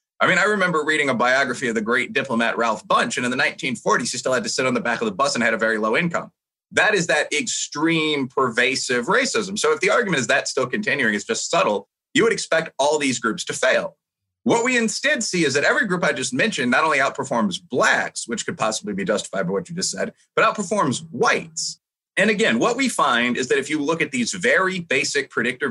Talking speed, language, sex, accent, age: 240 wpm, English, male, American, 30-49